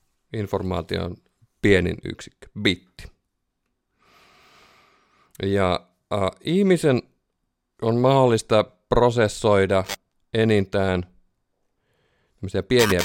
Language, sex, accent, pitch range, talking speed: Finnish, male, native, 95-125 Hz, 55 wpm